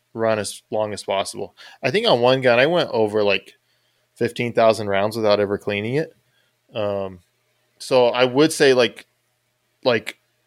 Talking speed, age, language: 155 wpm, 20-39, English